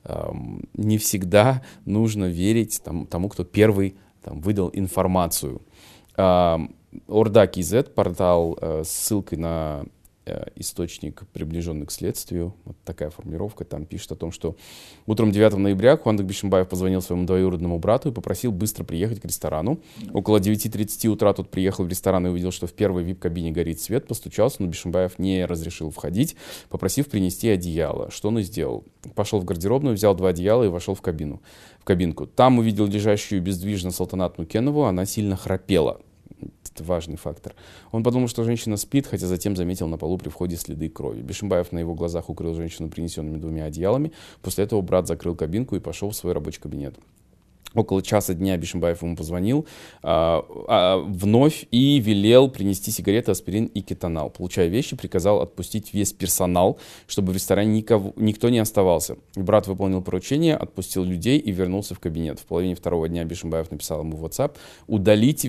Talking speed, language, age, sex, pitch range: 165 wpm, Russian, 20-39, male, 85-105 Hz